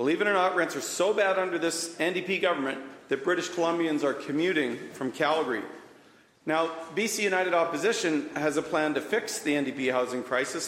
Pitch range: 145-175 Hz